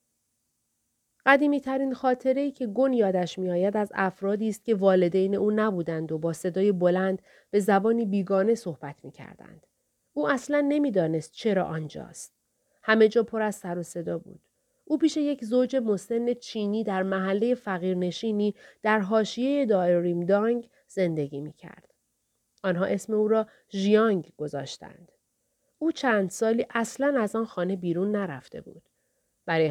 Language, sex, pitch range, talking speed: Persian, female, 180-230 Hz, 135 wpm